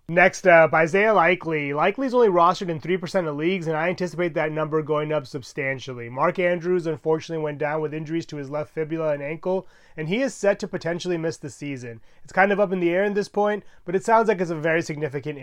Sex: male